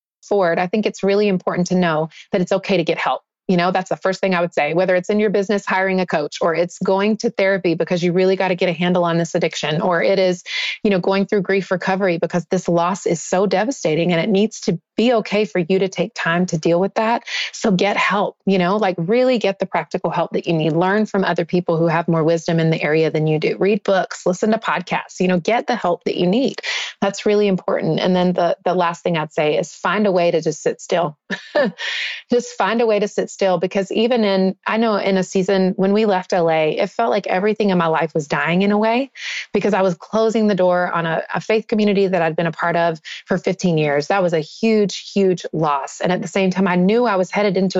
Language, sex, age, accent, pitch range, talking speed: English, female, 30-49, American, 175-205 Hz, 255 wpm